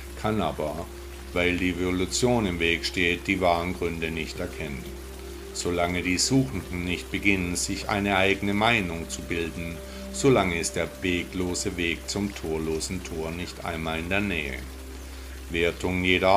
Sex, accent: male, German